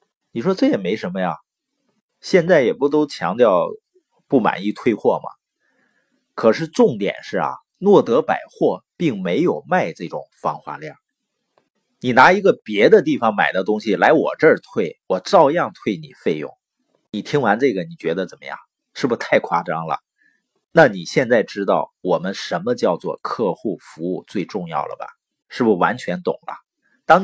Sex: male